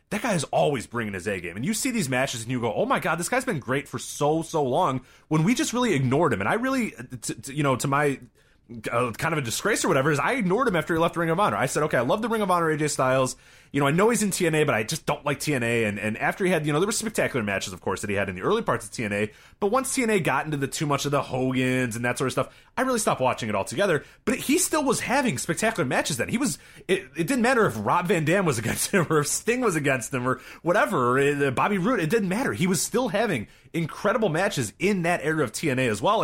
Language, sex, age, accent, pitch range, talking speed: English, male, 30-49, American, 125-185 Hz, 285 wpm